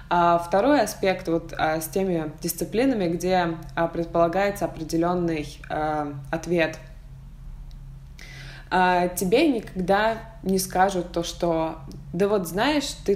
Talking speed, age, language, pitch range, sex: 90 wpm, 20-39, Russian, 165-205 Hz, female